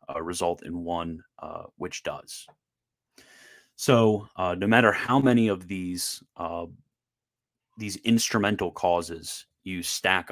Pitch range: 85-105 Hz